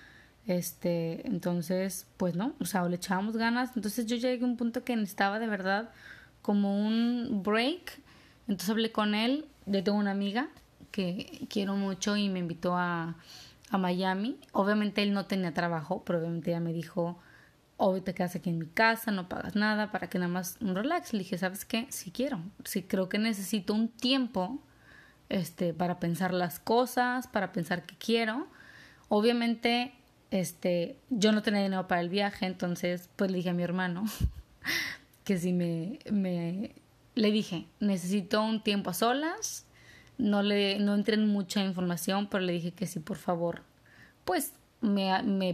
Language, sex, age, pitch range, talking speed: Spanish, female, 20-39, 180-225 Hz, 175 wpm